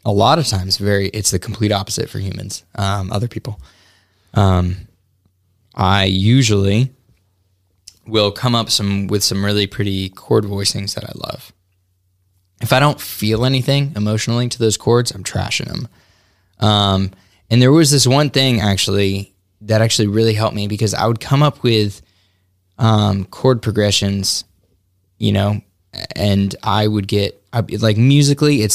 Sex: male